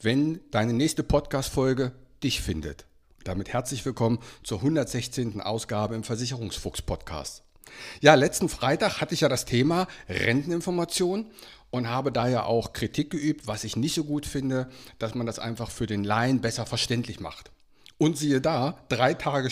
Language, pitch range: German, 110-150 Hz